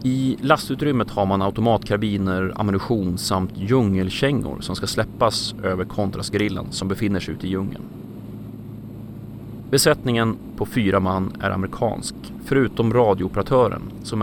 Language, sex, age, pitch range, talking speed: Swedish, male, 30-49, 100-120 Hz, 120 wpm